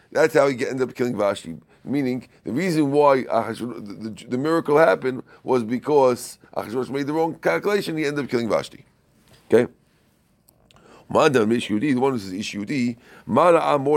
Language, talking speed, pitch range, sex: English, 140 wpm, 110-140 Hz, male